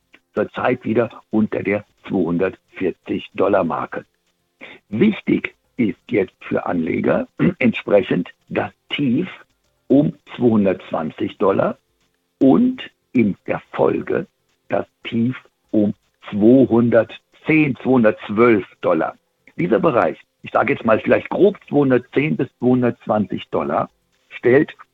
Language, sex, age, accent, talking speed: German, male, 60-79, German, 95 wpm